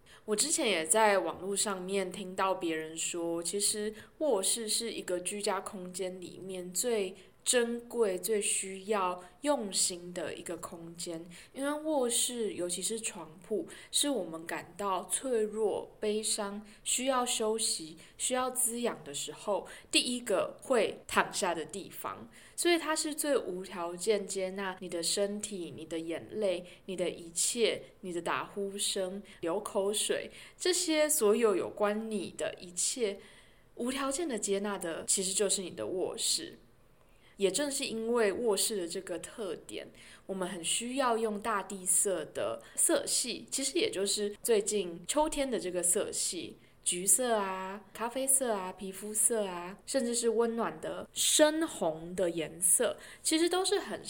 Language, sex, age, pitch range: Chinese, female, 20-39, 180-235 Hz